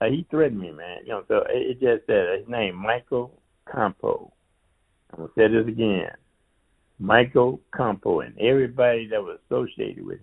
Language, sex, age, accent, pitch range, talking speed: English, male, 60-79, American, 100-120 Hz, 180 wpm